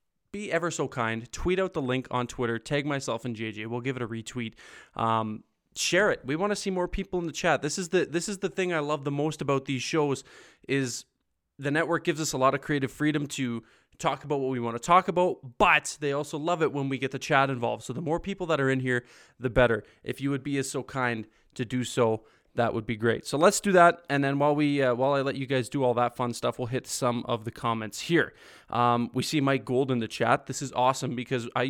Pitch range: 120-145 Hz